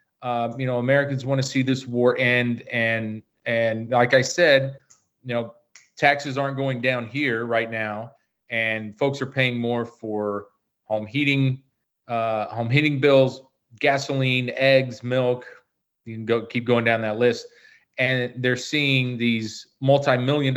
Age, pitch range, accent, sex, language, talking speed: 30-49, 115-140 Hz, American, male, English, 150 wpm